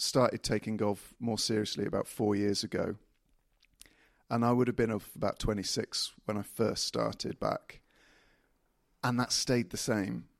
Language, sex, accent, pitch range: English, male, British, 105-120 Hz